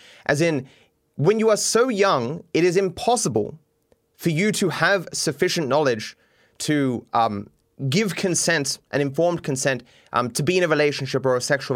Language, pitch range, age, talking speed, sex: English, 130-180 Hz, 20-39, 165 wpm, male